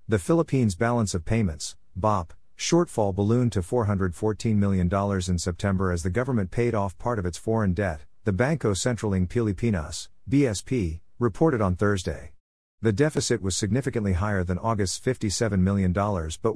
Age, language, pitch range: 50-69, English, 90-115 Hz